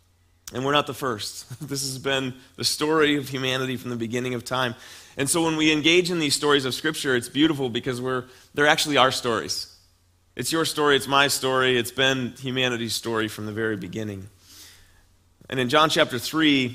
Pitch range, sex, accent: 110-150 Hz, male, American